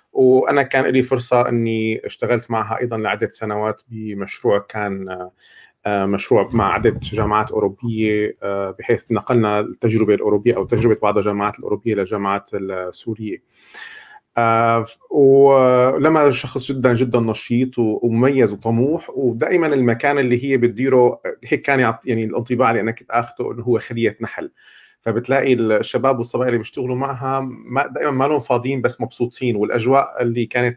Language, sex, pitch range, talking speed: Arabic, male, 110-125 Hz, 130 wpm